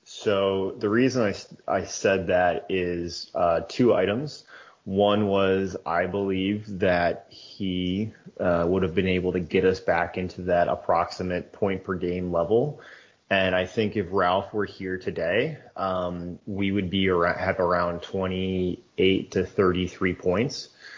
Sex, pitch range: male, 90-100 Hz